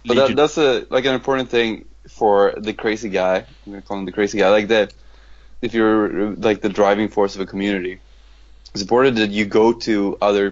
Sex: male